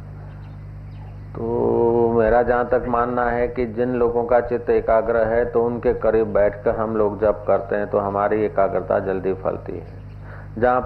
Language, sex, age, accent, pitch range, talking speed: Hindi, male, 50-69, native, 105-125 Hz, 160 wpm